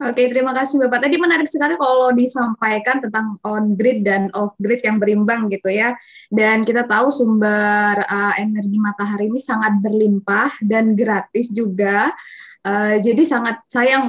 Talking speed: 160 wpm